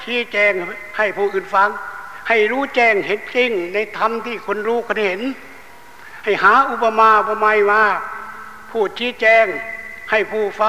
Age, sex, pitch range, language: 60-79, male, 200-235 Hz, Thai